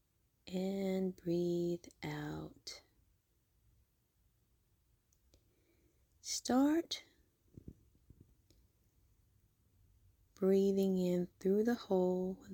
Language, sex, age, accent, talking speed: English, female, 30-49, American, 50 wpm